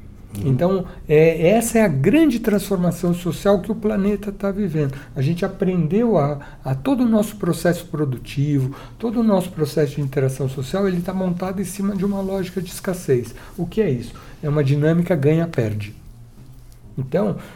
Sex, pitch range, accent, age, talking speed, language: male, 135-185 Hz, Brazilian, 60-79, 165 wpm, Portuguese